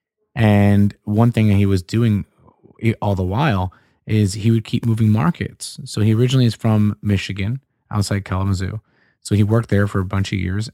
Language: English